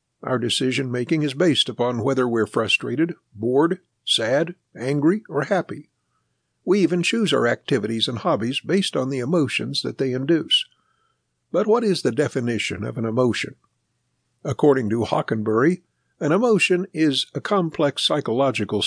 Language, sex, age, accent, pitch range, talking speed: English, male, 60-79, American, 120-160 Hz, 145 wpm